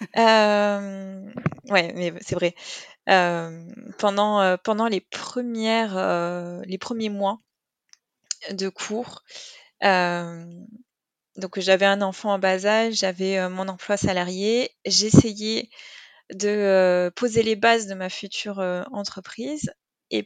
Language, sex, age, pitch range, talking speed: French, female, 20-39, 185-220 Hz, 120 wpm